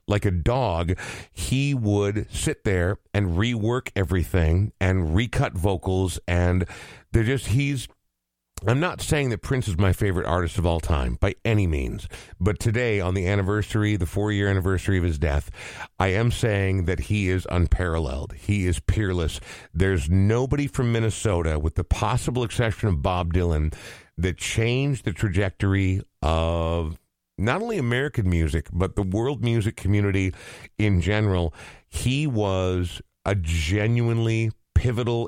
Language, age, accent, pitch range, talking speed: English, 50-69, American, 90-120 Hz, 140 wpm